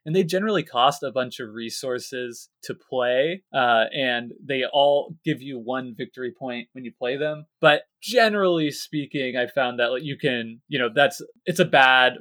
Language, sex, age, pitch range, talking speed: English, male, 20-39, 120-155 Hz, 185 wpm